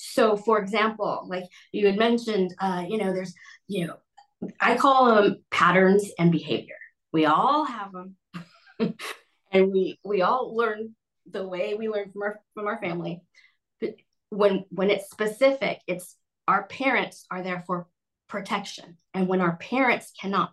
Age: 30-49